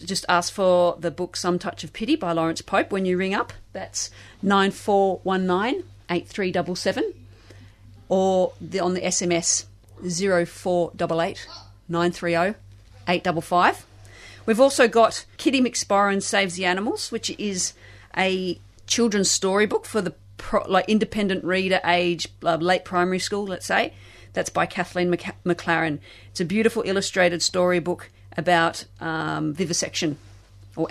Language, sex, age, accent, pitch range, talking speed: English, female, 40-59, Australian, 115-195 Hz, 155 wpm